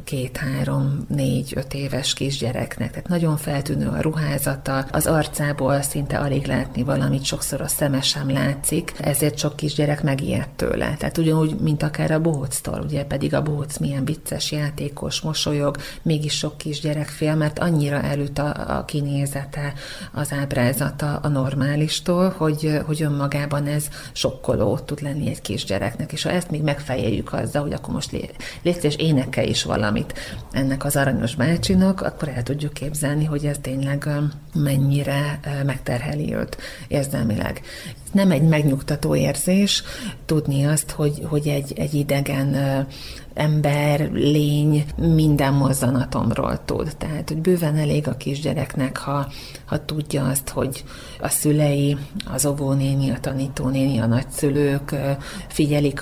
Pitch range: 135-150 Hz